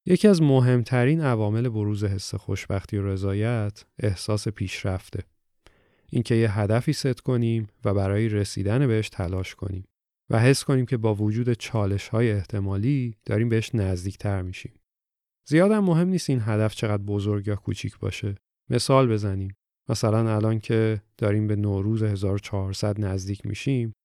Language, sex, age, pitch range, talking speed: Persian, male, 30-49, 100-120 Hz, 140 wpm